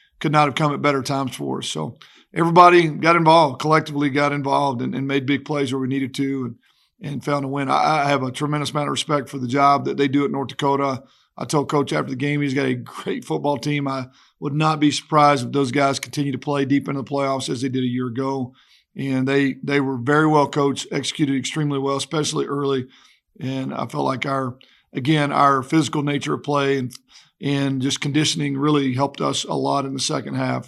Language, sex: English, male